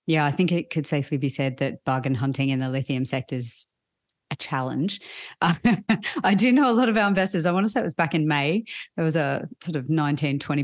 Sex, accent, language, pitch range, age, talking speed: female, Australian, English, 135-165 Hz, 30-49, 235 wpm